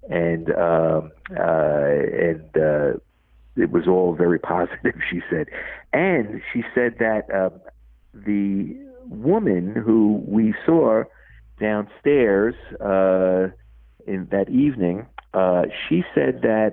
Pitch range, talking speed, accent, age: 90-110 Hz, 115 wpm, American, 50-69